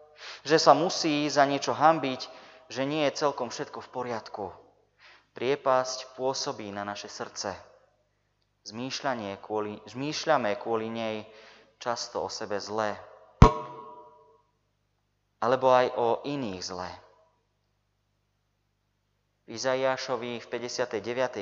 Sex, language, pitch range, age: male, Slovak, 100-125 Hz, 30-49